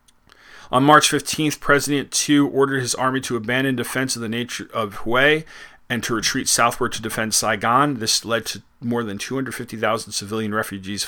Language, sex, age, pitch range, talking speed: English, male, 40-59, 105-130 Hz, 170 wpm